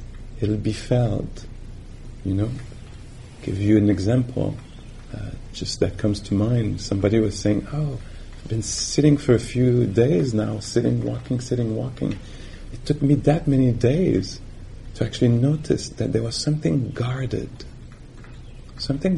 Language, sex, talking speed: English, male, 145 wpm